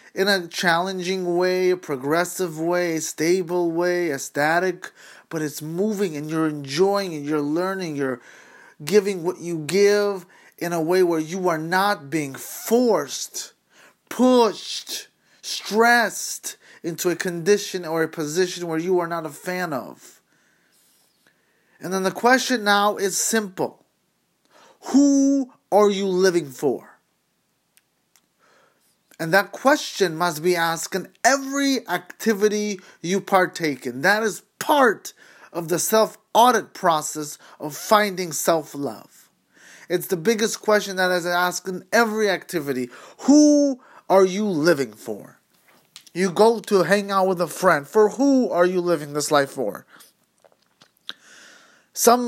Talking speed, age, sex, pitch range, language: 135 wpm, 30-49, male, 165-205 Hz, English